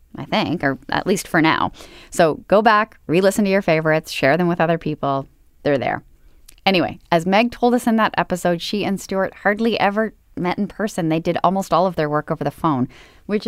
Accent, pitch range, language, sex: American, 145-210 Hz, English, female